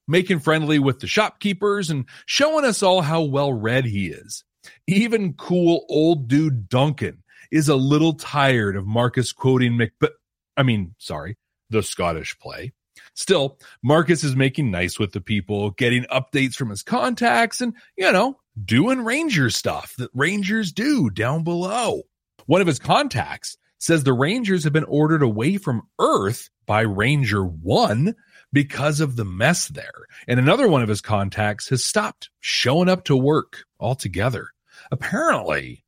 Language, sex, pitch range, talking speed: English, male, 115-175 Hz, 155 wpm